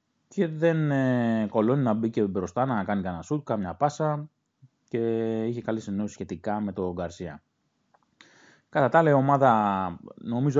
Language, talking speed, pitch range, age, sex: Greek, 155 wpm, 95-125 Hz, 20-39, male